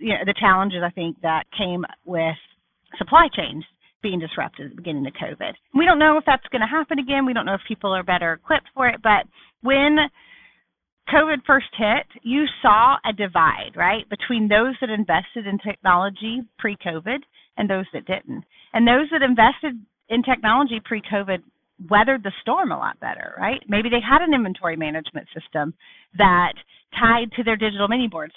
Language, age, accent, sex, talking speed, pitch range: English, 30-49, American, female, 180 wpm, 185-245 Hz